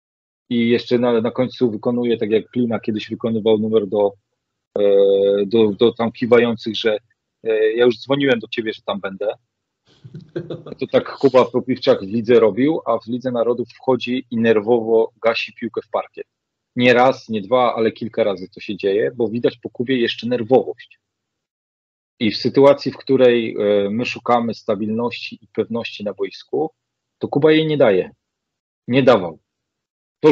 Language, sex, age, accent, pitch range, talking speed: Polish, male, 40-59, native, 110-130 Hz, 160 wpm